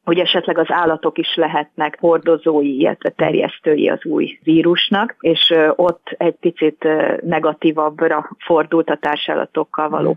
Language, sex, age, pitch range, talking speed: Hungarian, female, 30-49, 155-180 Hz, 125 wpm